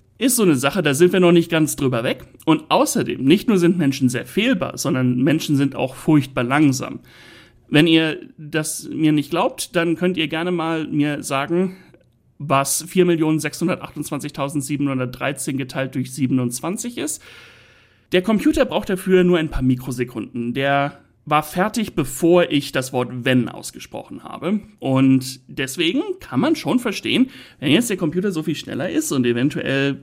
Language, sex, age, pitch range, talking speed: German, male, 60-79, 130-175 Hz, 160 wpm